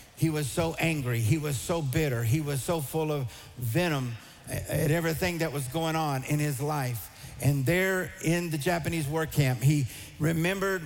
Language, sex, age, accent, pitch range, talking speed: English, male, 50-69, American, 135-165 Hz, 175 wpm